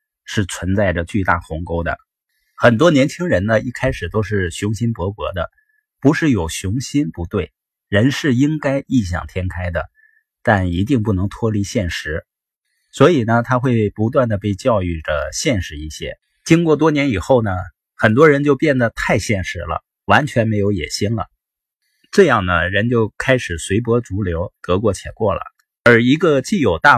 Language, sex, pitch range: Chinese, male, 95-140 Hz